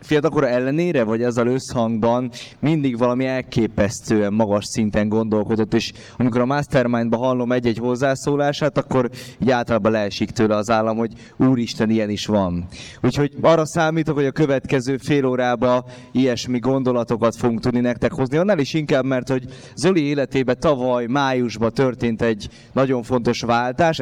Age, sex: 20-39, male